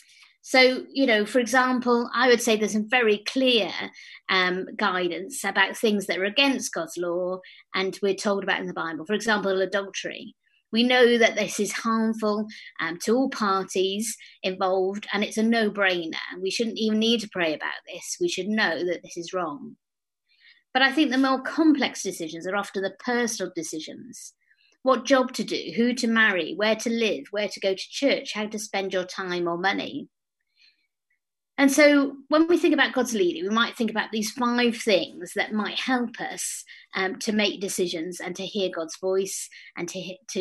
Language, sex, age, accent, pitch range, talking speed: English, female, 30-49, British, 185-240 Hz, 190 wpm